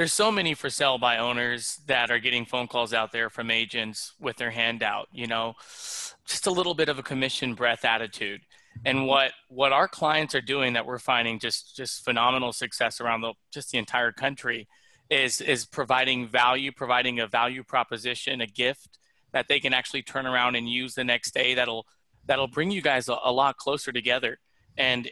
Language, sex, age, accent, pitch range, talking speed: English, male, 20-39, American, 120-135 Hz, 195 wpm